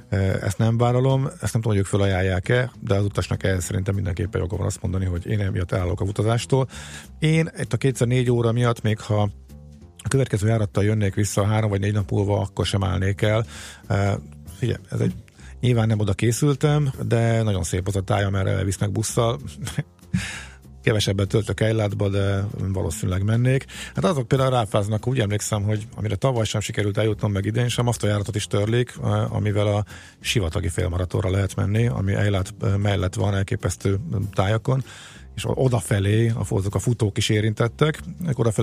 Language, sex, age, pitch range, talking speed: Hungarian, male, 50-69, 95-115 Hz, 165 wpm